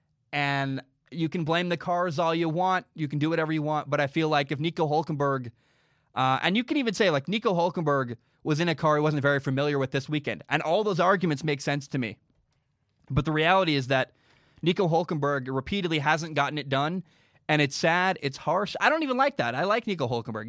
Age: 20-39